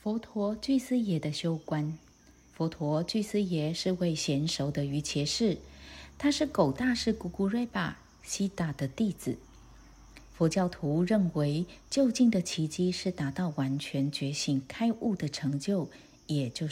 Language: Chinese